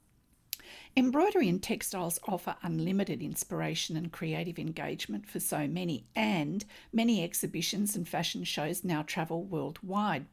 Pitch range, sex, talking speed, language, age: 165-230 Hz, female, 120 wpm, English, 50-69